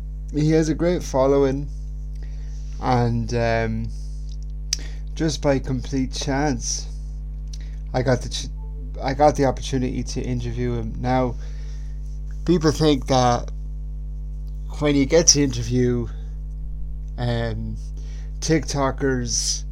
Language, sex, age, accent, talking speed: English, male, 30-49, British, 100 wpm